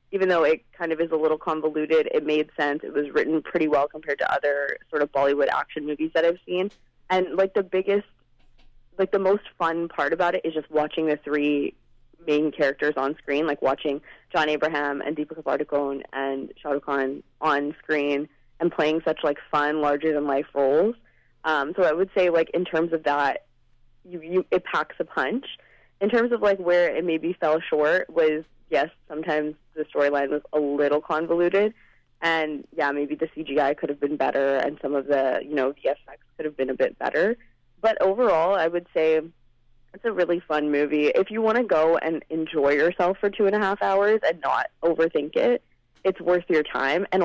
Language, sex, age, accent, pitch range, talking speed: English, female, 20-39, American, 145-170 Hz, 200 wpm